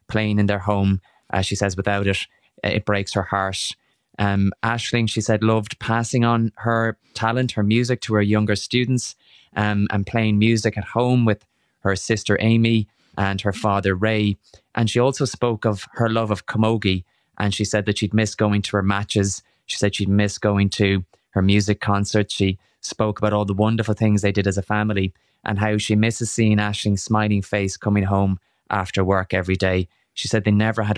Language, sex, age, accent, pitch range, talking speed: English, male, 20-39, Irish, 100-110 Hz, 200 wpm